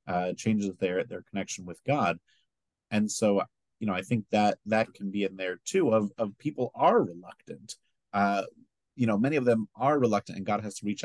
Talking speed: 205 wpm